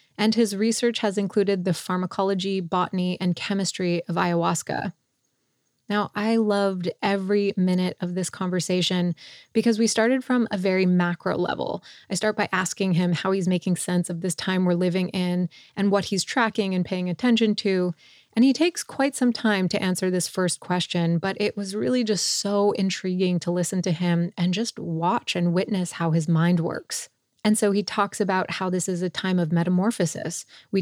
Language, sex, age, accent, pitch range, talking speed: English, female, 20-39, American, 180-210 Hz, 185 wpm